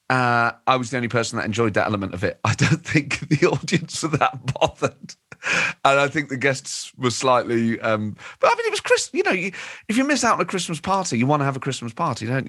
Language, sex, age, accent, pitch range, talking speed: English, male, 30-49, British, 100-135 Hz, 255 wpm